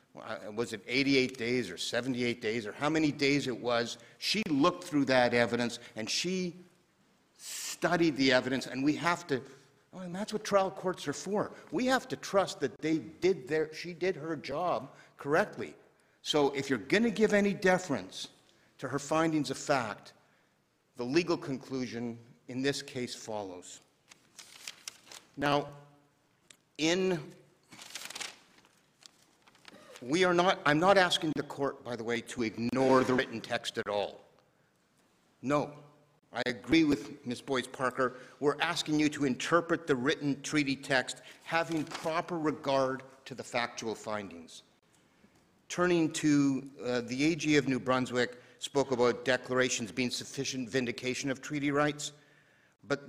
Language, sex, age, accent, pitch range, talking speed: English, male, 50-69, American, 125-160 Hz, 145 wpm